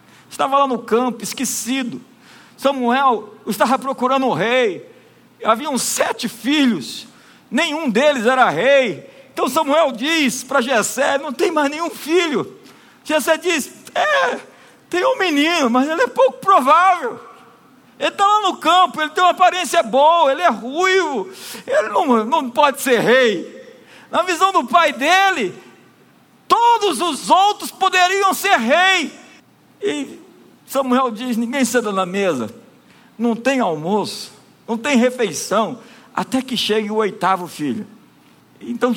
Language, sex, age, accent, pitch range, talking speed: Portuguese, male, 50-69, Brazilian, 240-310 Hz, 135 wpm